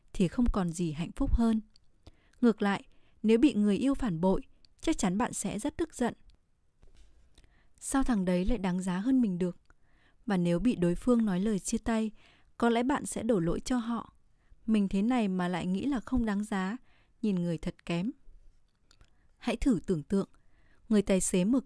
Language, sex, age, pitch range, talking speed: Vietnamese, female, 20-39, 185-240 Hz, 195 wpm